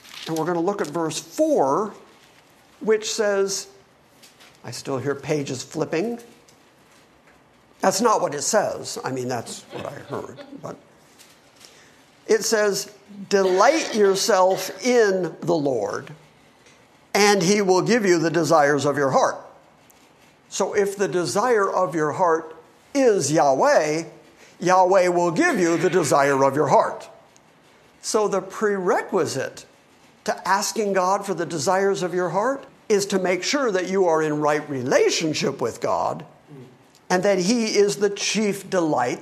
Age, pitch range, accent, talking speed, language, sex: 50-69, 150-200 Hz, American, 140 wpm, English, male